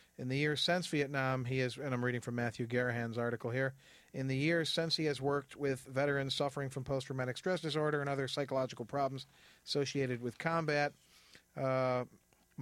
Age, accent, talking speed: 40-59, American, 175 wpm